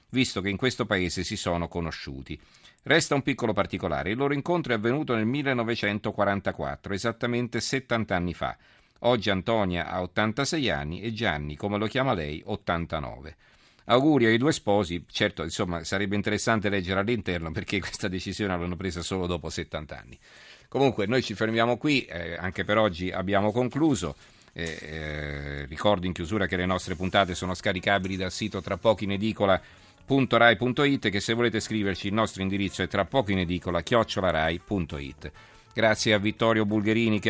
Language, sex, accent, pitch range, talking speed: Italian, male, native, 90-110 Hz, 160 wpm